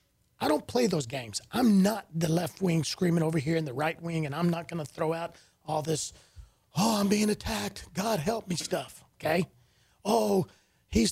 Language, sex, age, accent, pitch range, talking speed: English, male, 40-59, American, 155-215 Hz, 200 wpm